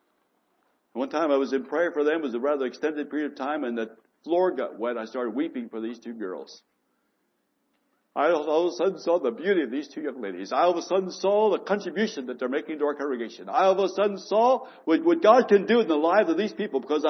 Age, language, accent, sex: 60-79, English, American, male